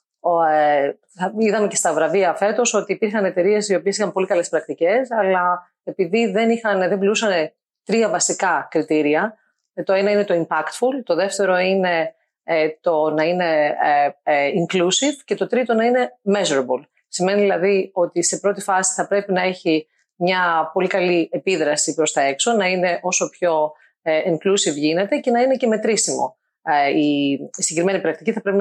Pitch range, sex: 160-200 Hz, female